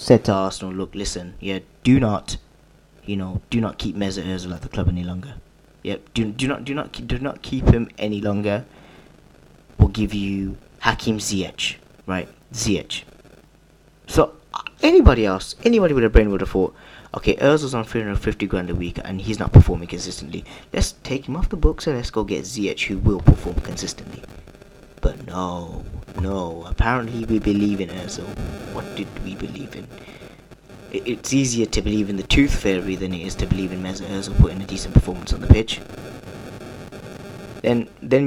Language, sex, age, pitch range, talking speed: English, male, 20-39, 95-115 Hz, 185 wpm